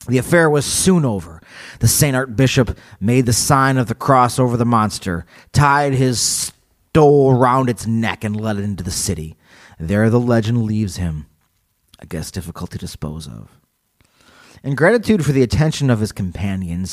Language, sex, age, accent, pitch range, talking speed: English, male, 30-49, American, 100-130 Hz, 175 wpm